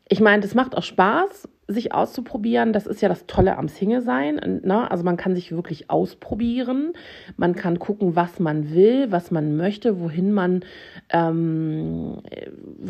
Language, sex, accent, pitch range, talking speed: German, female, German, 180-240 Hz, 170 wpm